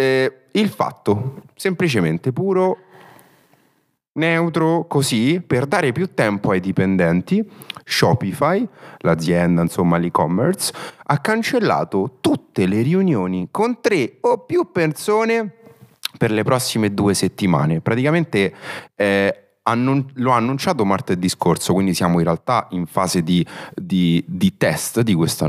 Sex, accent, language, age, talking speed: male, native, Italian, 30-49, 120 wpm